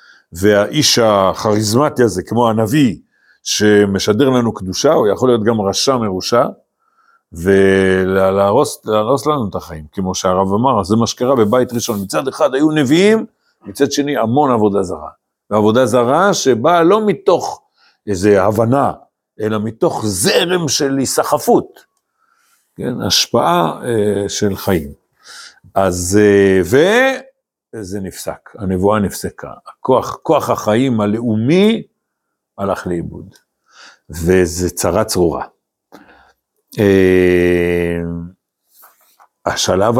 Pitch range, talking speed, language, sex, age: 100-140 Hz, 105 wpm, Hebrew, male, 60-79